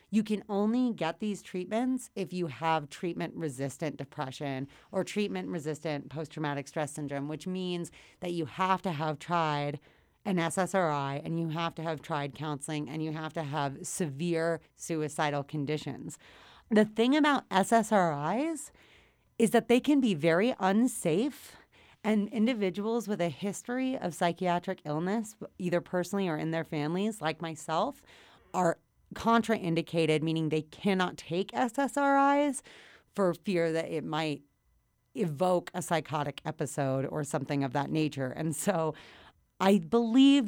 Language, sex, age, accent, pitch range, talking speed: English, female, 30-49, American, 155-205 Hz, 140 wpm